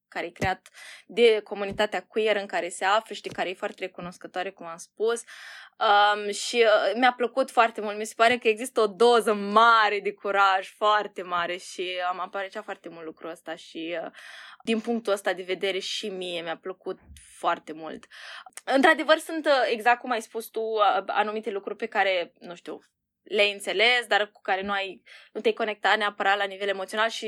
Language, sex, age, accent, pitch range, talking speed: Romanian, female, 20-39, native, 185-220 Hz, 185 wpm